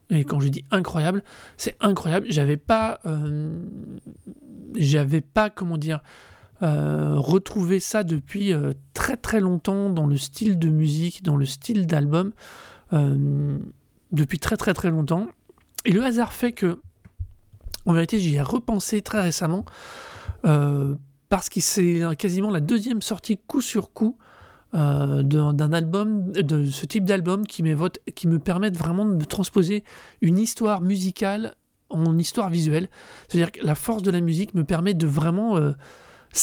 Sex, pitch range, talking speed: male, 155-200 Hz, 145 wpm